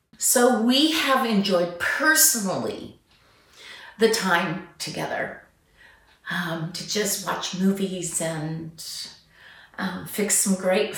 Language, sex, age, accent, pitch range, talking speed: English, female, 40-59, American, 185-255 Hz, 100 wpm